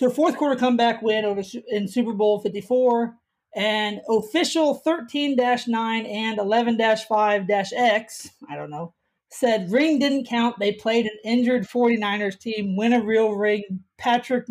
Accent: American